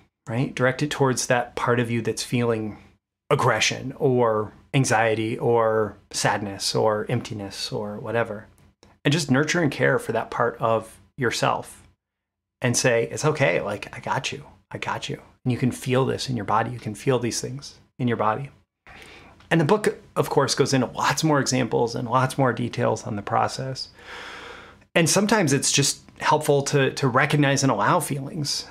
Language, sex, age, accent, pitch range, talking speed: English, male, 30-49, American, 110-140 Hz, 175 wpm